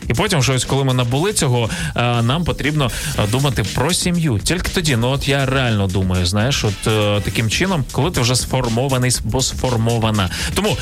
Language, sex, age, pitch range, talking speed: Ukrainian, male, 20-39, 105-130 Hz, 165 wpm